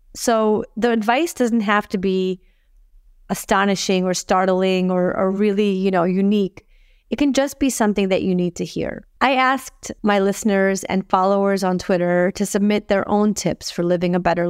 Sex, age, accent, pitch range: female, 30-49, American, 180-215 Hz